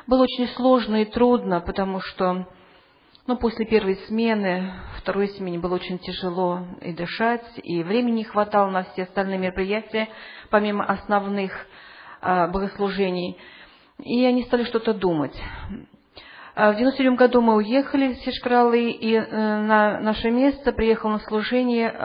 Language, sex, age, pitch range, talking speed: English, female, 40-59, 185-230 Hz, 135 wpm